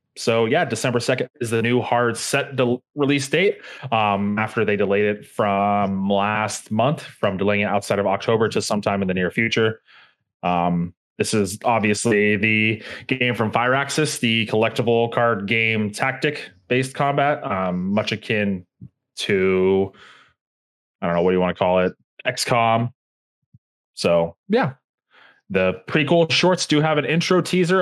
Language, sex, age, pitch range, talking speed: English, male, 20-39, 105-135 Hz, 150 wpm